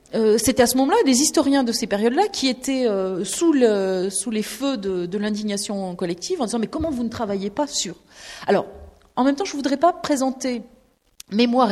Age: 30-49